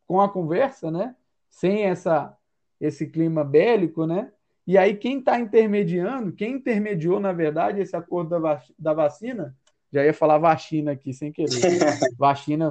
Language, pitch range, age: Portuguese, 160-210 Hz, 20-39